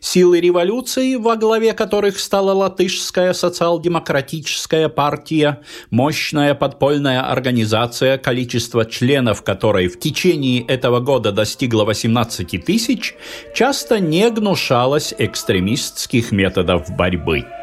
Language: Russian